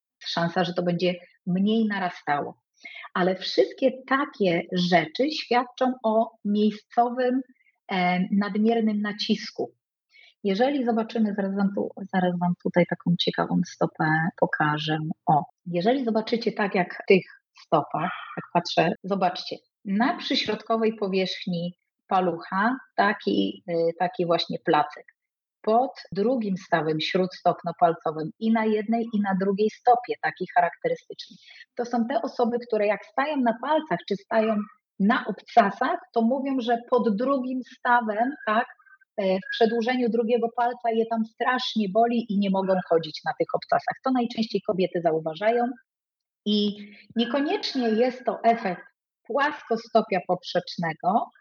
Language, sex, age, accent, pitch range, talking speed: Polish, female, 30-49, native, 185-250 Hz, 125 wpm